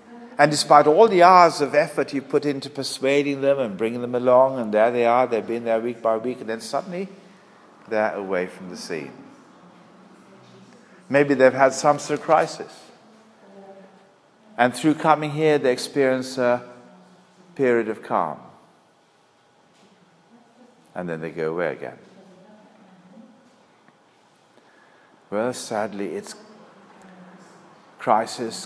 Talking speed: 130 wpm